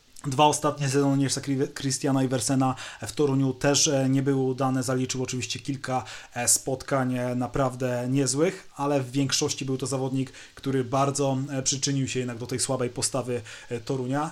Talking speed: 140 wpm